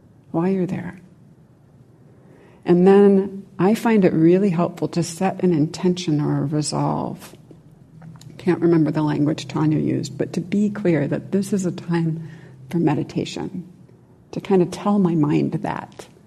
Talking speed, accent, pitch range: 150 wpm, American, 155-185 Hz